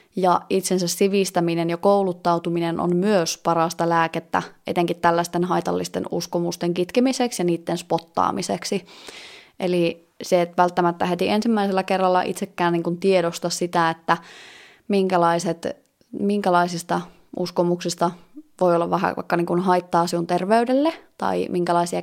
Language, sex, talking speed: Finnish, female, 110 wpm